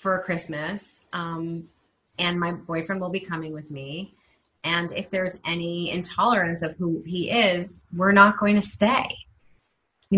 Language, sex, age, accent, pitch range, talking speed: English, female, 30-49, American, 165-205 Hz, 155 wpm